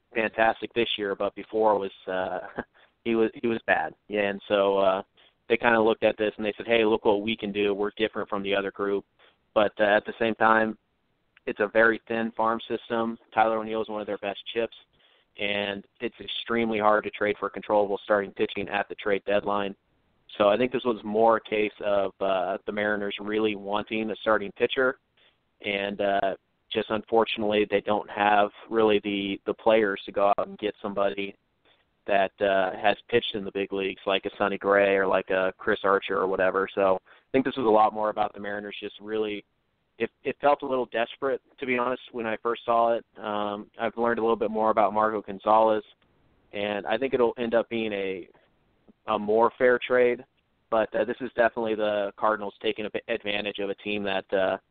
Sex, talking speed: male, 205 wpm